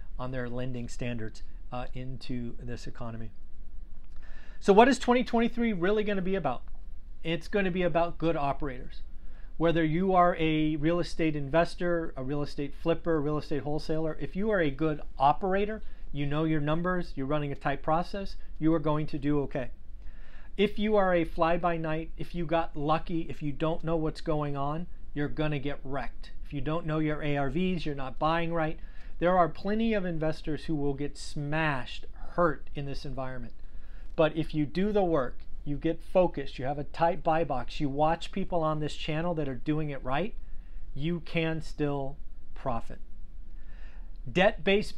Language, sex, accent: English, male, American